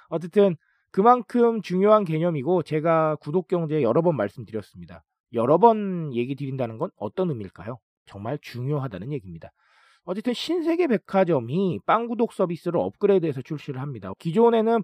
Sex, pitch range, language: male, 125-195 Hz, Korean